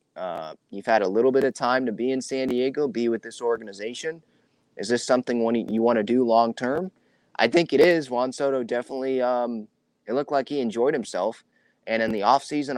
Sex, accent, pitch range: male, American, 110-130 Hz